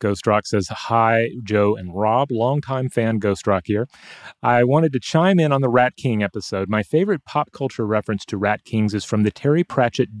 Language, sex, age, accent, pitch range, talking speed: English, male, 30-49, American, 100-130 Hz, 205 wpm